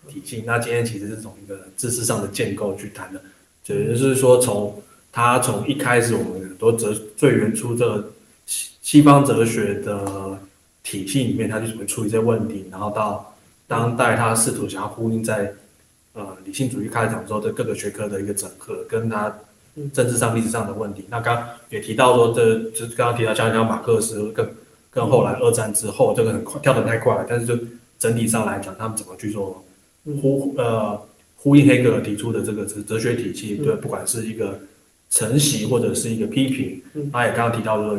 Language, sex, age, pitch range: Chinese, male, 20-39, 105-125 Hz